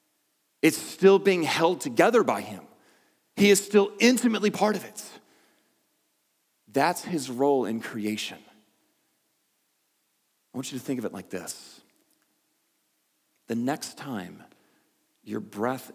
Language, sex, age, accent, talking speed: English, male, 40-59, American, 125 wpm